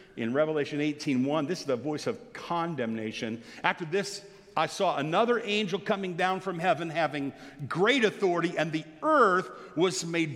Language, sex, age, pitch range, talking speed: English, male, 50-69, 145-195 Hz, 155 wpm